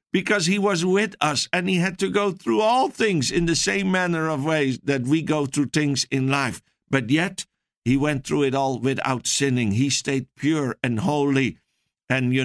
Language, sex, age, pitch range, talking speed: English, male, 60-79, 135-165 Hz, 200 wpm